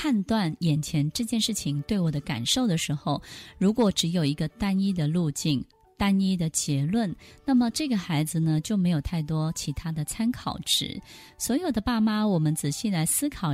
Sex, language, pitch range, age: female, Chinese, 155-225 Hz, 20-39